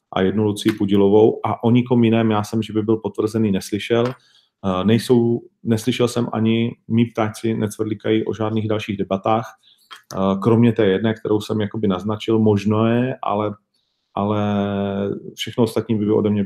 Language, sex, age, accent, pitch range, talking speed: Czech, male, 40-59, native, 105-120 Hz, 155 wpm